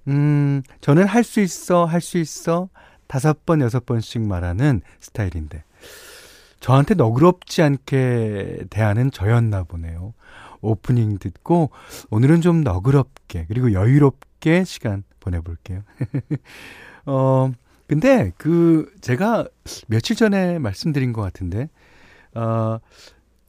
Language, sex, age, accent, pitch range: Korean, male, 30-49, native, 105-170 Hz